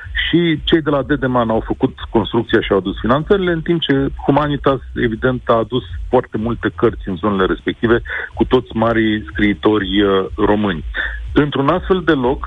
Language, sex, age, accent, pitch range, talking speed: Romanian, male, 40-59, native, 110-145 Hz, 170 wpm